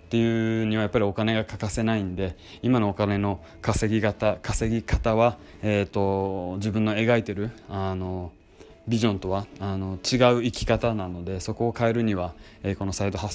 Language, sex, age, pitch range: Japanese, male, 20-39, 95-110 Hz